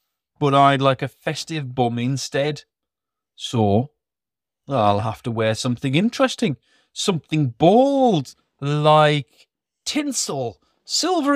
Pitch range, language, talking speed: 115-160 Hz, English, 100 wpm